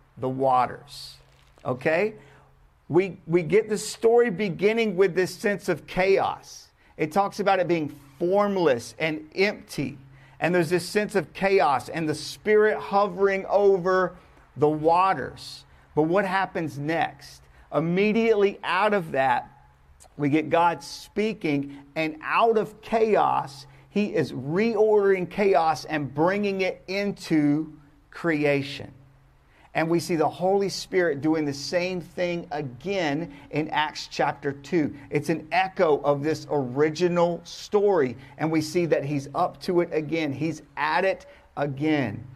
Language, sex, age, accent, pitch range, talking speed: English, male, 50-69, American, 145-190 Hz, 135 wpm